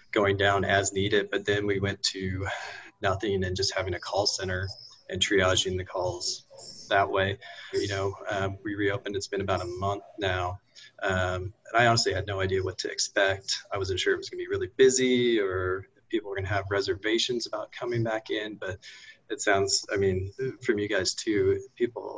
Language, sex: English, male